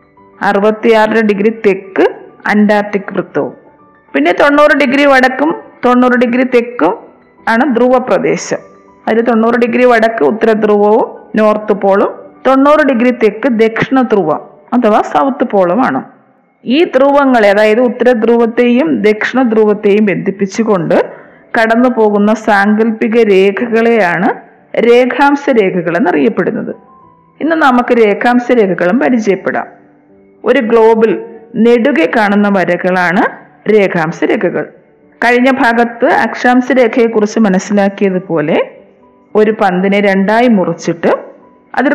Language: Malayalam